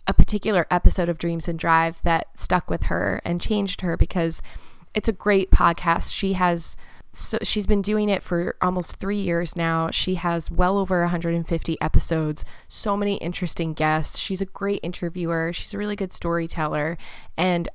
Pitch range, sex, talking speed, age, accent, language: 165-190 Hz, female, 170 wpm, 20-39, American, English